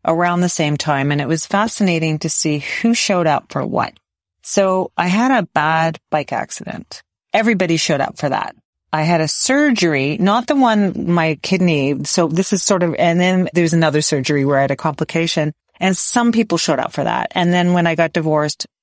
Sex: female